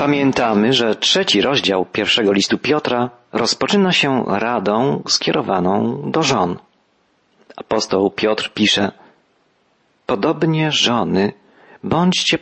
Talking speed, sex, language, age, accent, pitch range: 90 wpm, male, Polish, 40-59, native, 105-130 Hz